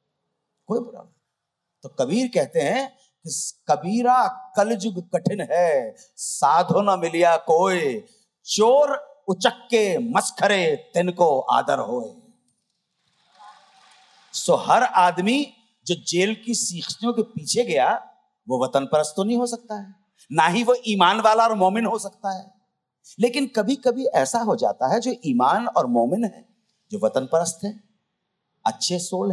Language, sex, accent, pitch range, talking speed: Hindi, male, native, 165-235 Hz, 100 wpm